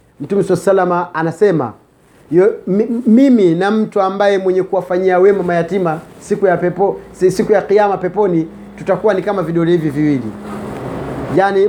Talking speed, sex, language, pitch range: 135 wpm, male, Swahili, 170-230 Hz